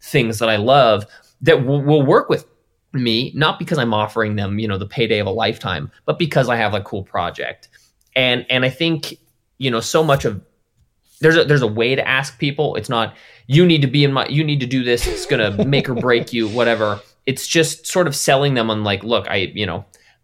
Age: 20-39